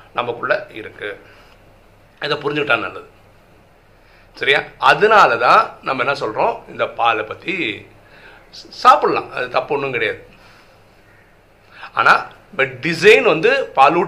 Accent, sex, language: native, male, Tamil